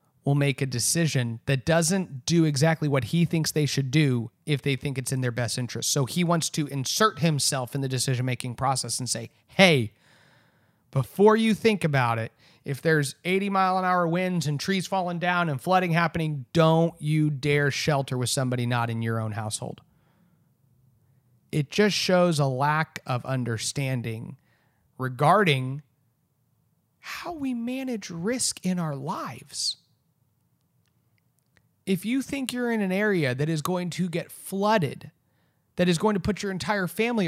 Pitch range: 135-190 Hz